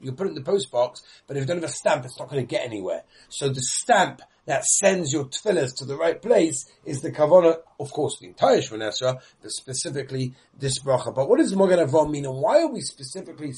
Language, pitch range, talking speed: English, 130-185 Hz, 240 wpm